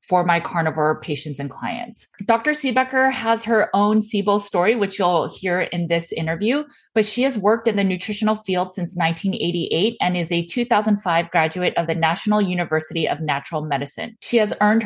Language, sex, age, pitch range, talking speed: English, female, 20-39, 165-215 Hz, 180 wpm